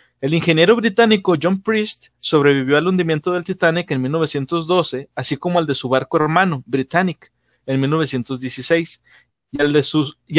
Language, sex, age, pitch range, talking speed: Spanish, male, 30-49, 150-195 Hz, 135 wpm